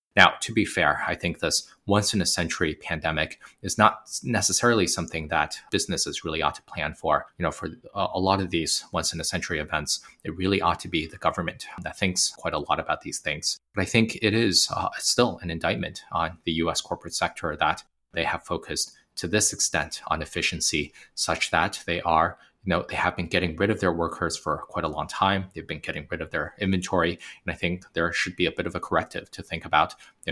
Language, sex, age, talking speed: English, male, 30-49, 215 wpm